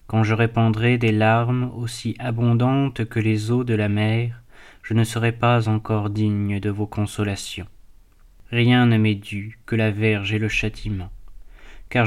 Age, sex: 20-39, male